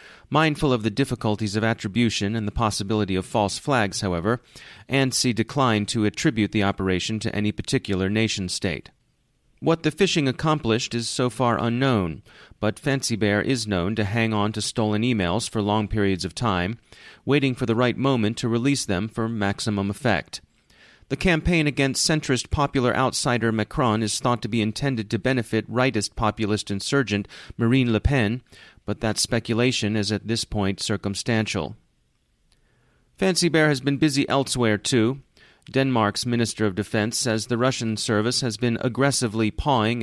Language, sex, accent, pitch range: English, male, American, 105-130 Hz